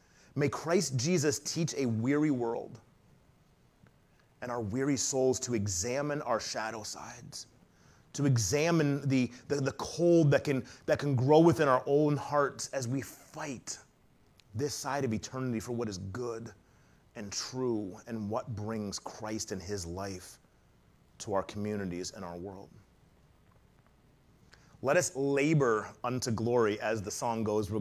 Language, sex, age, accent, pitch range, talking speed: English, male, 30-49, American, 110-145 Hz, 145 wpm